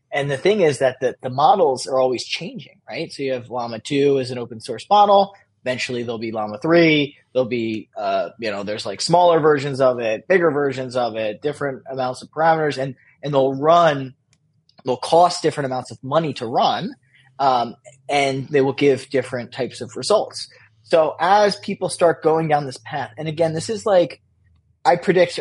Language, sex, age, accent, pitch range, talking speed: English, male, 20-39, American, 125-160 Hz, 195 wpm